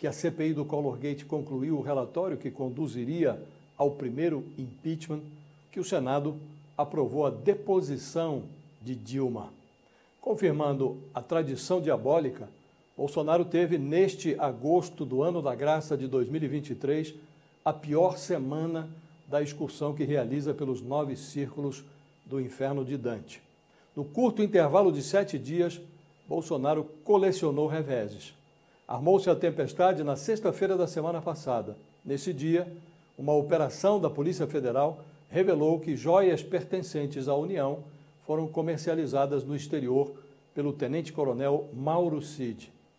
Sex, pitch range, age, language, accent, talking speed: male, 140-170 Hz, 60-79, English, Brazilian, 120 wpm